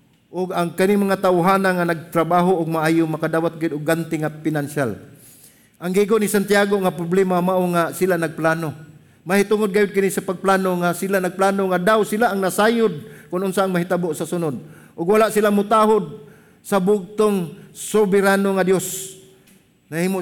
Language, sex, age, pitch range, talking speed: English, male, 50-69, 150-190 Hz, 155 wpm